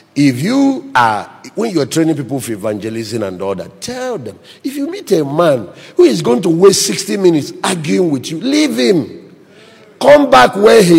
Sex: male